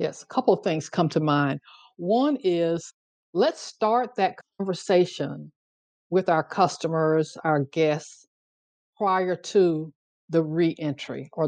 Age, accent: 60-79, American